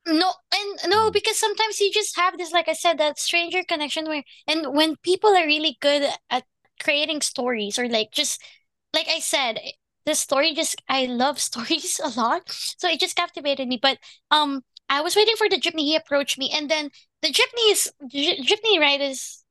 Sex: female